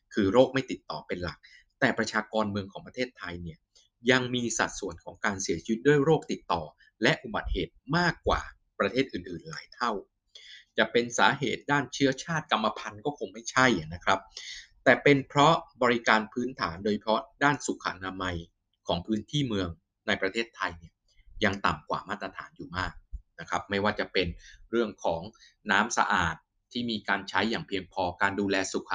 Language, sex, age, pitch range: Thai, male, 20-39, 95-120 Hz